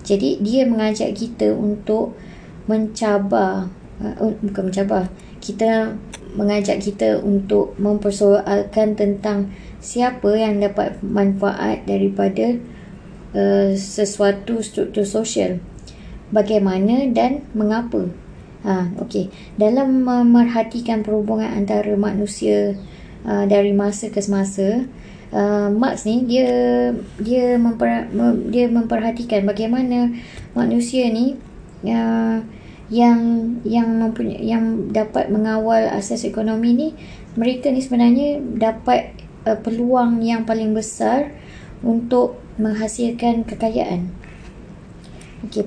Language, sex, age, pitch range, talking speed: Malay, male, 20-39, 205-235 Hz, 95 wpm